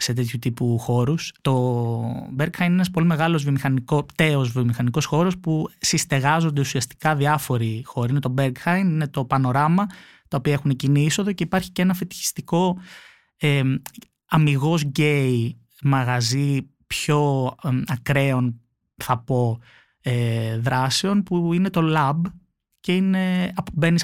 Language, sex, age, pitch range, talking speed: Greek, male, 20-39, 130-170 Hz, 130 wpm